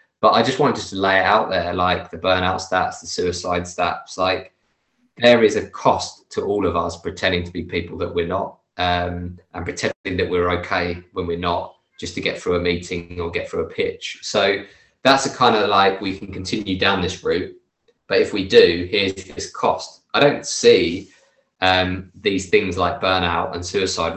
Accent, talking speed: British, 200 wpm